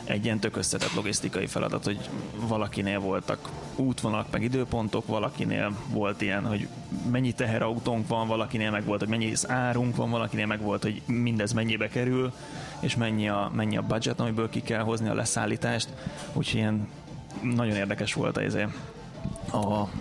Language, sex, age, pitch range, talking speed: Hungarian, male, 20-39, 105-125 Hz, 155 wpm